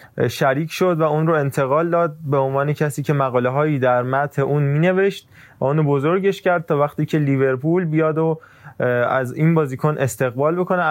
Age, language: 20-39, Persian